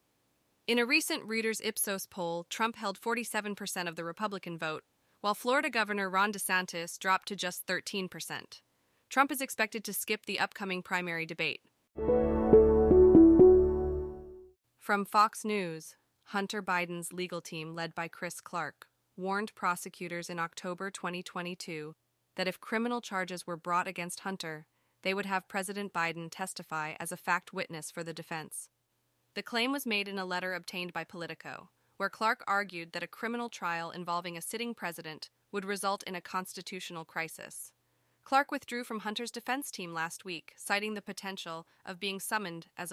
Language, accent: English, American